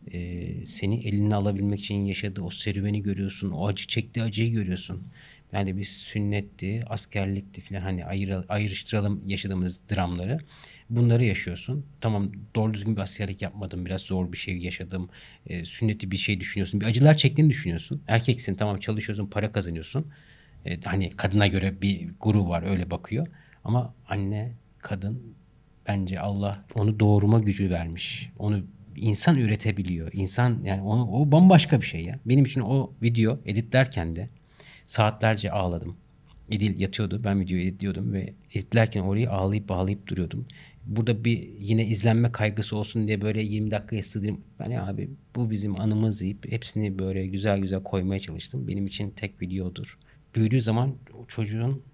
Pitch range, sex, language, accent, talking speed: 95-115 Hz, male, Turkish, native, 150 wpm